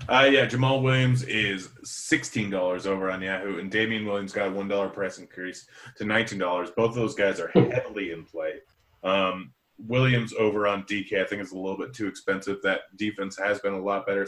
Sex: male